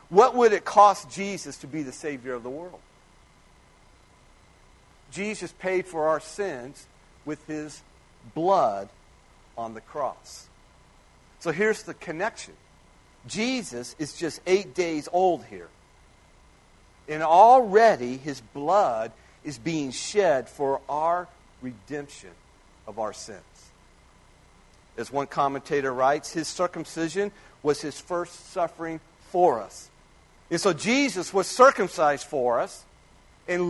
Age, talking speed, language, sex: 50-69, 120 wpm, English, male